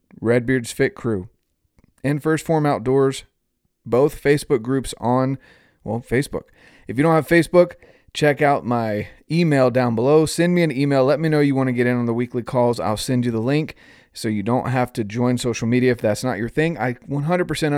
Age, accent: 30-49, American